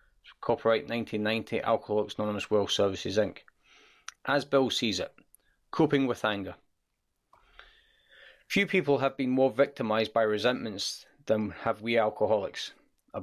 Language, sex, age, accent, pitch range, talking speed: English, male, 30-49, British, 105-130 Hz, 125 wpm